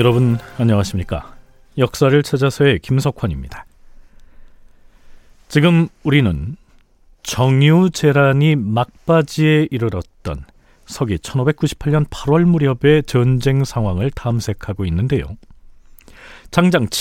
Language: Korean